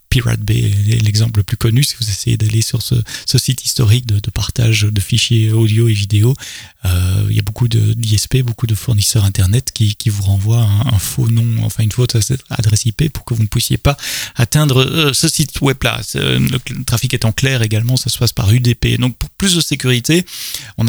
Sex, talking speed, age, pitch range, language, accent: male, 220 wpm, 30-49, 105-125 Hz, French, French